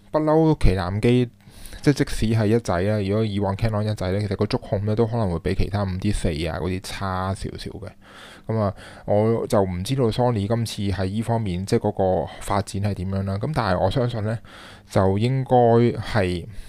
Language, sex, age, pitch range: Chinese, male, 20-39, 95-115 Hz